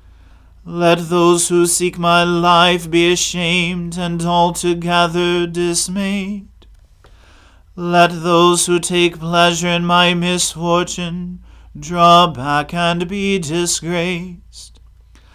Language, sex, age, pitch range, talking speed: English, male, 40-59, 170-175 Hz, 95 wpm